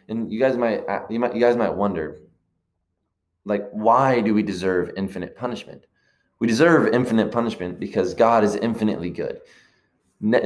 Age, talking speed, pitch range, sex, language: 20-39, 155 wpm, 95-115 Hz, male, English